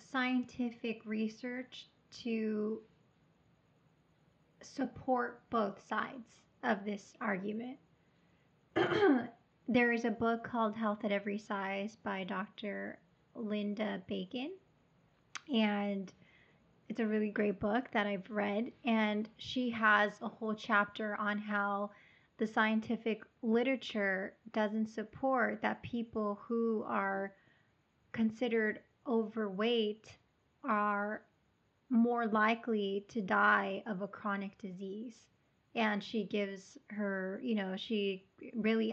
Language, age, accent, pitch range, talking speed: English, 30-49, American, 205-230 Hz, 105 wpm